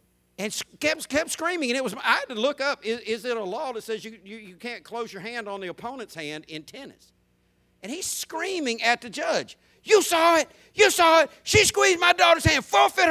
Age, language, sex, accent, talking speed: 50-69, English, male, American, 230 wpm